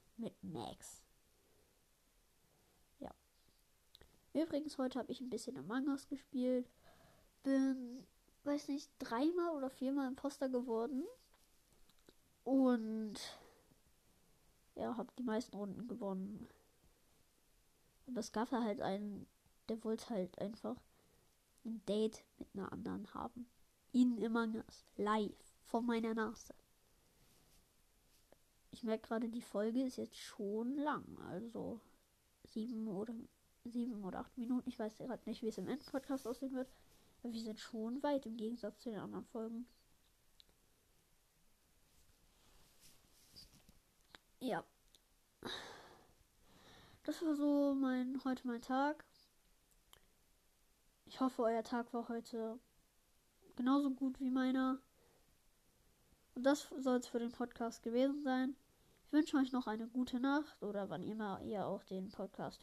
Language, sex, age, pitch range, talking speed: German, female, 20-39, 220-265 Hz, 125 wpm